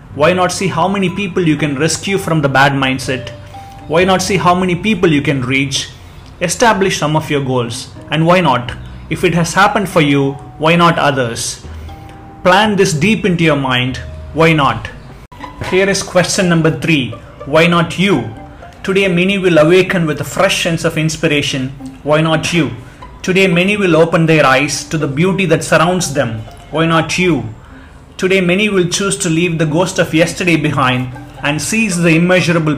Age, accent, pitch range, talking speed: 30-49, Indian, 135-175 Hz, 180 wpm